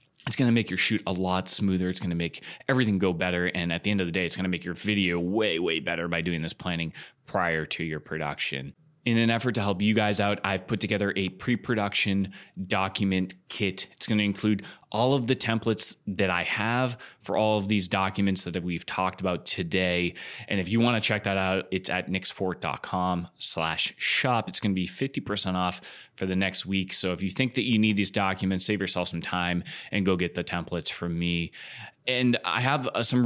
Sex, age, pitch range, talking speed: male, 20-39, 90-110 Hz, 220 wpm